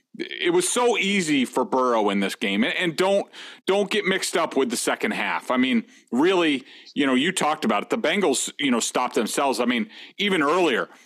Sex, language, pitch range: male, English, 145-215 Hz